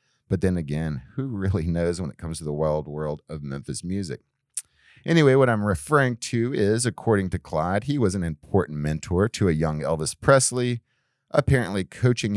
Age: 30-49